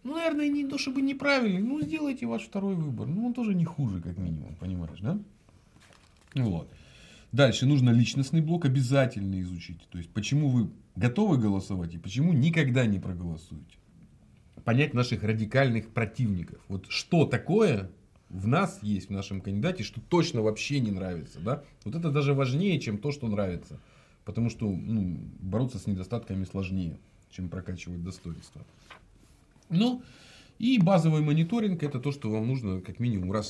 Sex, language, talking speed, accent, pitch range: male, Russian, 160 wpm, native, 100-155 Hz